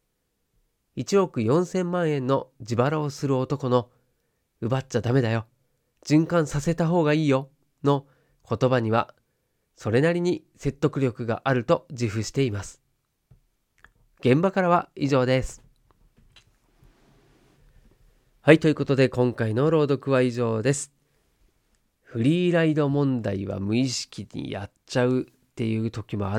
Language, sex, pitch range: Japanese, male, 120-150 Hz